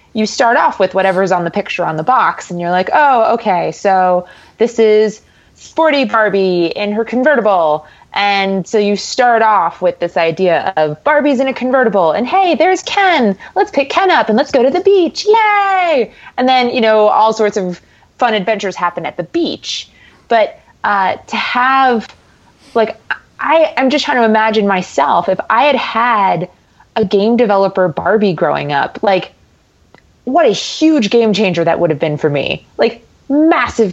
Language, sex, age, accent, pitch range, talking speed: English, female, 20-39, American, 180-260 Hz, 175 wpm